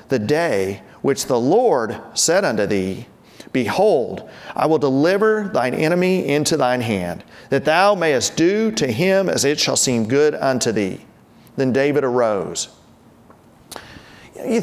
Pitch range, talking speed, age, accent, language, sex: 160-210 Hz, 140 wpm, 40-59, American, English, male